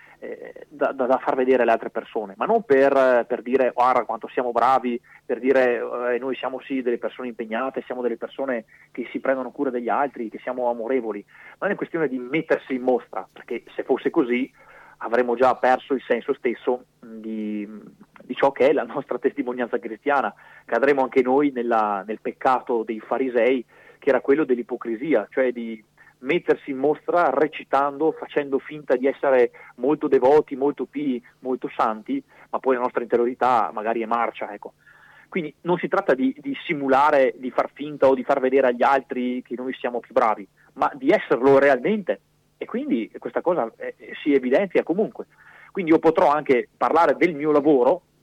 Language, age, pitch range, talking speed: Italian, 30-49, 120-150 Hz, 180 wpm